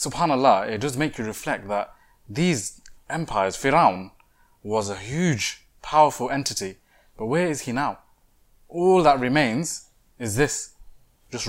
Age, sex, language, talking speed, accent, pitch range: 20-39, male, English, 135 wpm, British, 110-145 Hz